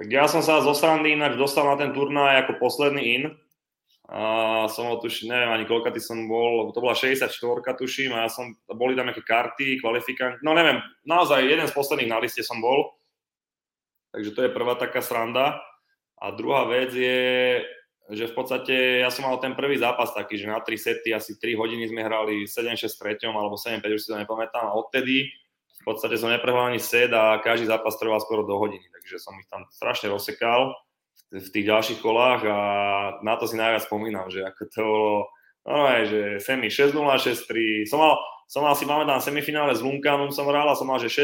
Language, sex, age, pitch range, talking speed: Czech, male, 20-39, 110-140 Hz, 200 wpm